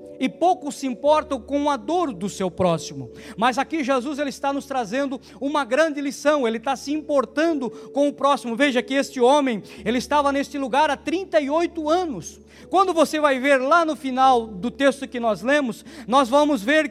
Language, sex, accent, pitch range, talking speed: Portuguese, male, Brazilian, 245-300 Hz, 180 wpm